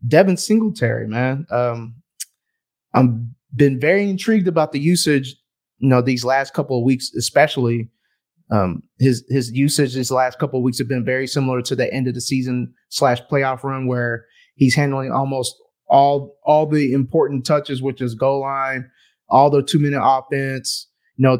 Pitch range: 125-140 Hz